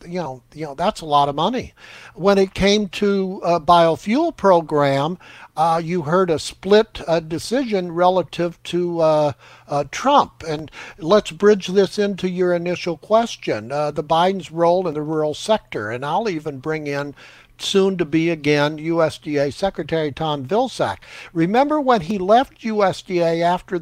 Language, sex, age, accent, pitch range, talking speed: English, male, 60-79, American, 150-195 Hz, 160 wpm